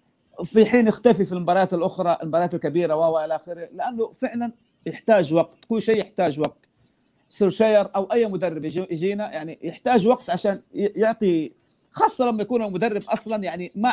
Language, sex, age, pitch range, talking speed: Arabic, male, 40-59, 165-225 Hz, 150 wpm